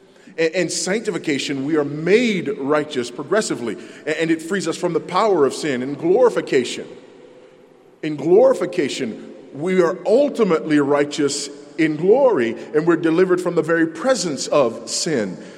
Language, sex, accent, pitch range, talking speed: English, male, American, 130-195 Hz, 135 wpm